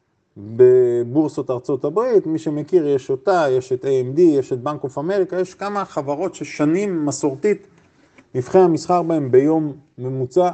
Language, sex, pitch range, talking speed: Hebrew, male, 135-180 Hz, 140 wpm